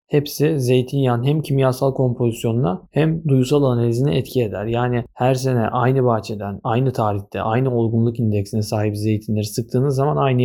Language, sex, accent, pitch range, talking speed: Turkish, male, native, 105-130 Hz, 145 wpm